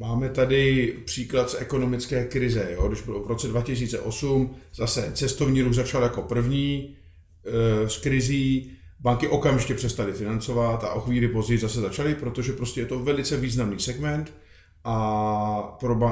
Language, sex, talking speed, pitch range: Czech, male, 150 wpm, 110-130 Hz